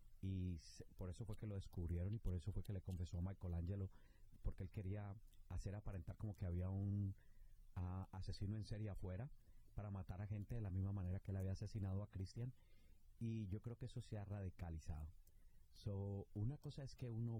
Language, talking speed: Spanish, 205 wpm